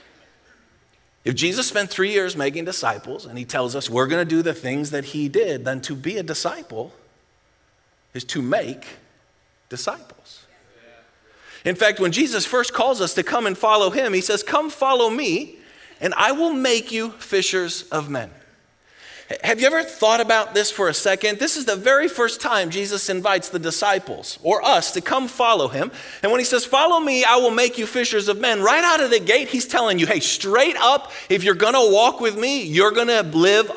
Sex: male